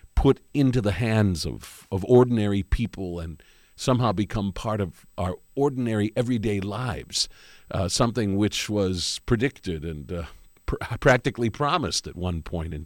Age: 50-69